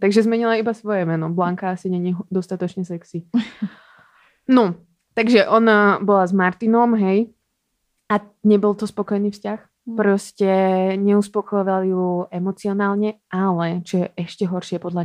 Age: 20-39